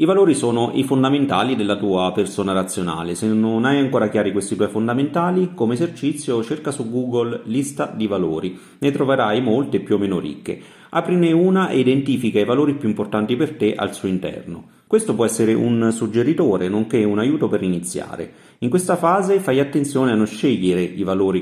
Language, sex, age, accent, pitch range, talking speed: Italian, male, 30-49, native, 100-140 Hz, 180 wpm